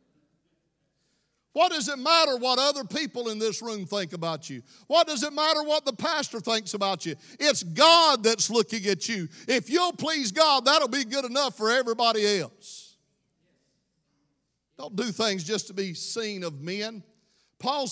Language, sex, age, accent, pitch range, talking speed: English, male, 50-69, American, 175-245 Hz, 165 wpm